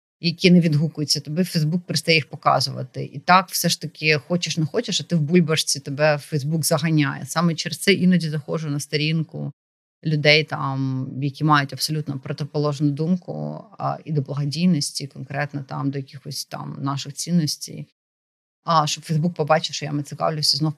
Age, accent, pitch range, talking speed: 30-49, native, 145-170 Hz, 165 wpm